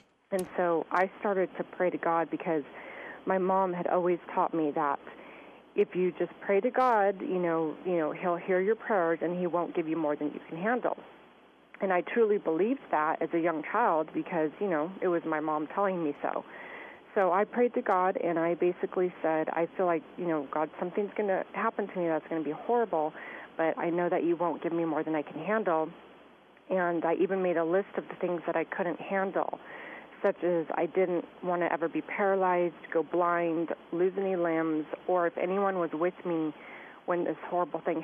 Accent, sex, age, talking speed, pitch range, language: American, female, 30-49, 215 wpm, 160-185 Hz, English